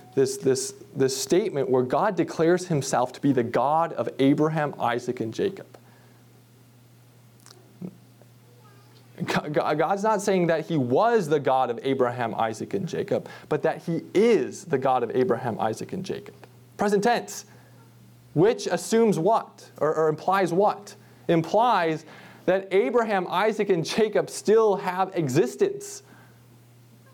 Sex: male